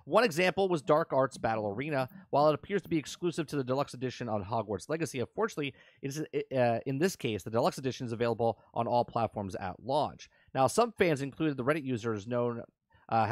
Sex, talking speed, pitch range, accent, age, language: male, 200 wpm, 115-155 Hz, American, 30-49, English